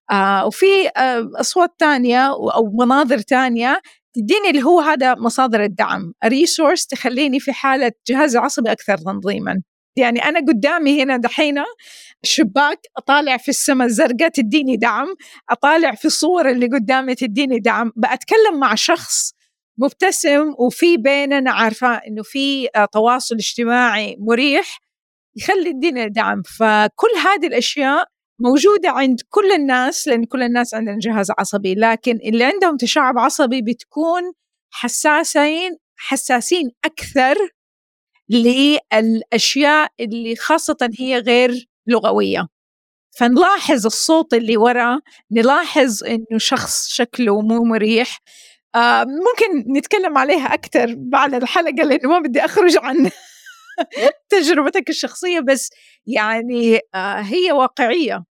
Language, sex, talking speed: Arabic, female, 110 wpm